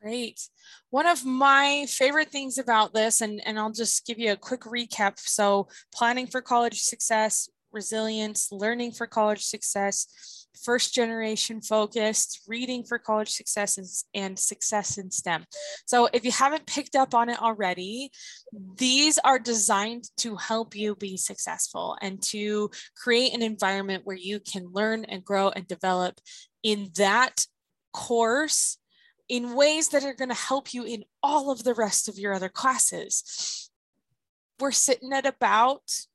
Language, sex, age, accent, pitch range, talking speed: English, female, 20-39, American, 210-260 Hz, 155 wpm